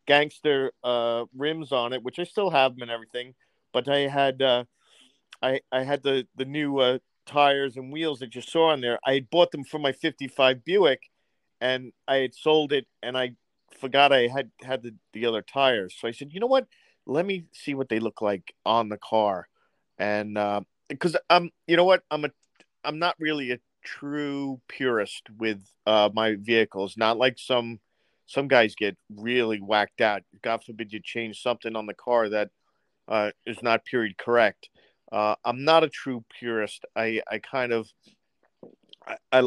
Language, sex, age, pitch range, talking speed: English, male, 40-59, 110-140 Hz, 185 wpm